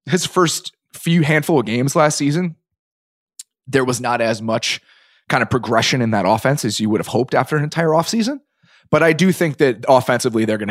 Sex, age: male, 20-39